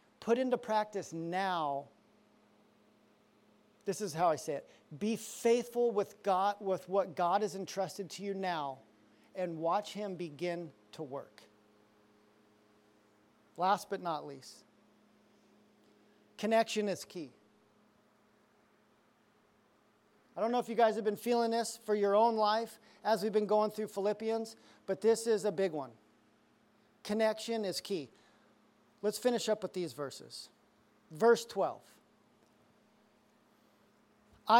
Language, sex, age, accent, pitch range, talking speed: English, male, 40-59, American, 180-230 Hz, 125 wpm